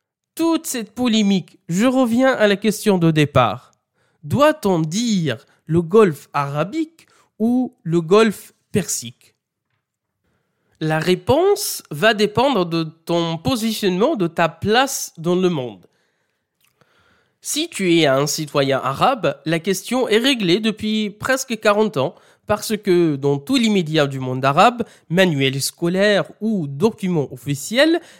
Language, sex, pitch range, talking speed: French, male, 155-225 Hz, 125 wpm